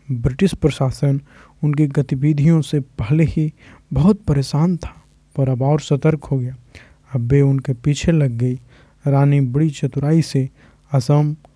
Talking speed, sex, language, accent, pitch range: 140 wpm, male, Hindi, native, 140-160 Hz